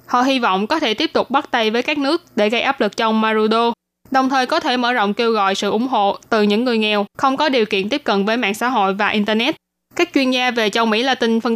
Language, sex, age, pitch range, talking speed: Vietnamese, female, 10-29, 215-270 Hz, 275 wpm